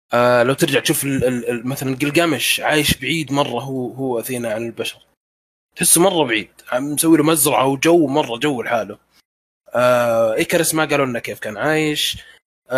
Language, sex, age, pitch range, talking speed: Arabic, male, 20-39, 125-155 Hz, 165 wpm